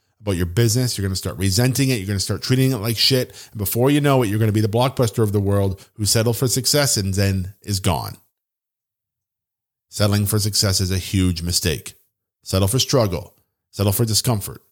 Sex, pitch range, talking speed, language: male, 100-135 Hz, 210 wpm, English